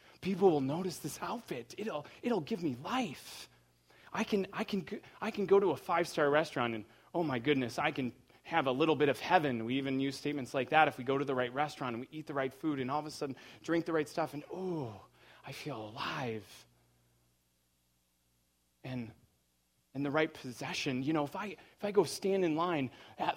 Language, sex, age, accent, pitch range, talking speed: English, male, 30-49, American, 115-160 Hz, 210 wpm